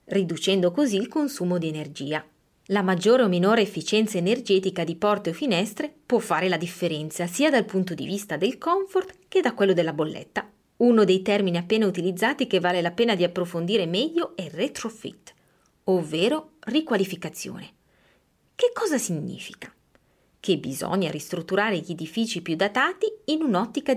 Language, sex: Italian, female